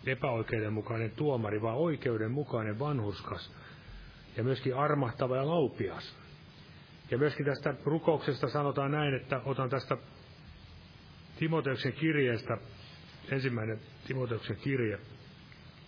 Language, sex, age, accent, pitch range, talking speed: Finnish, male, 40-59, native, 115-145 Hz, 90 wpm